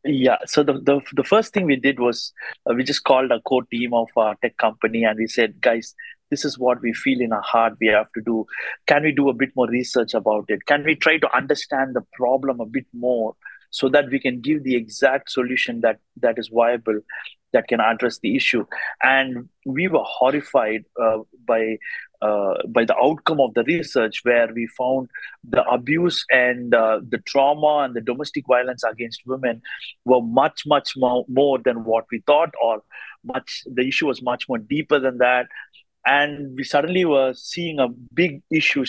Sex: male